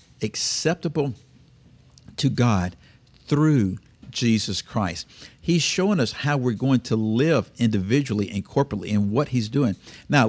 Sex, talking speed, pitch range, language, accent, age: male, 130 wpm, 105-130 Hz, English, American, 50-69